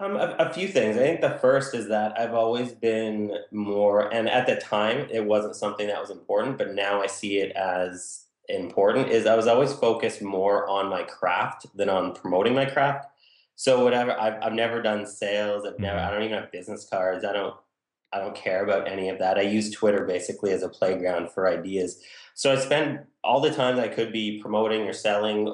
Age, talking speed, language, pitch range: 20-39, 215 wpm, English, 100-125 Hz